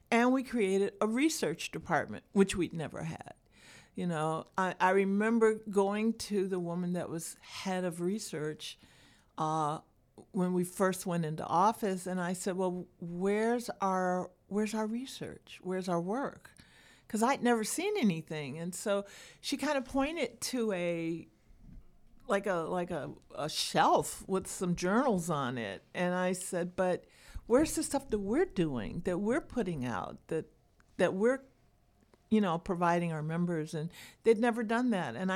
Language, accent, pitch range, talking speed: English, American, 175-225 Hz, 160 wpm